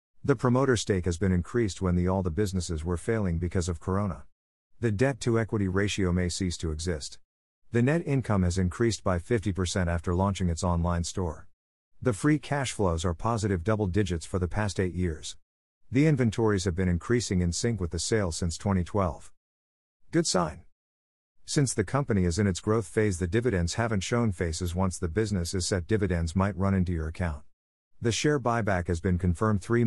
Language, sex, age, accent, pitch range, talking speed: English, male, 50-69, American, 85-110 Hz, 185 wpm